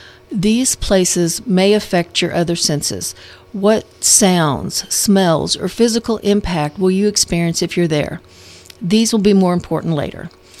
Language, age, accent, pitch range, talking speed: English, 50-69, American, 165-205 Hz, 140 wpm